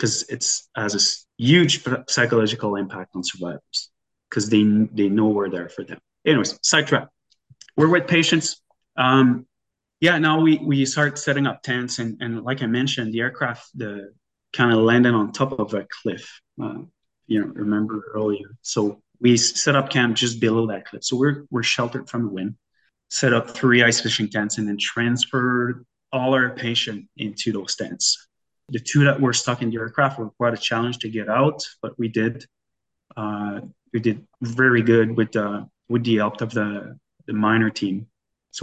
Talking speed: 180 wpm